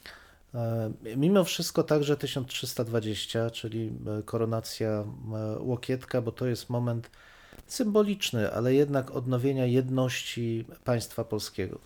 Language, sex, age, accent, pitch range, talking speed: Polish, male, 40-59, native, 115-140 Hz, 90 wpm